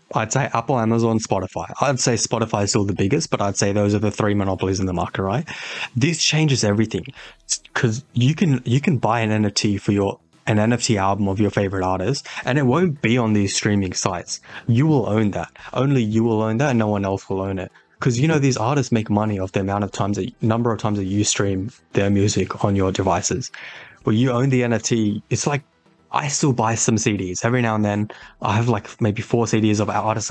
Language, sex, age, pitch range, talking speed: English, male, 20-39, 100-125 Hz, 230 wpm